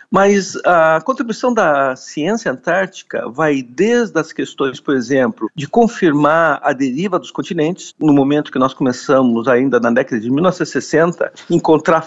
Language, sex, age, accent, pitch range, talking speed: Portuguese, male, 50-69, Brazilian, 135-180 Hz, 145 wpm